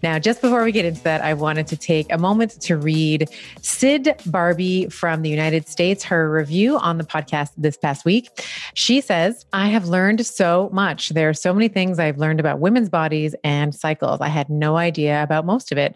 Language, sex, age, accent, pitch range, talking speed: English, female, 30-49, American, 155-190 Hz, 210 wpm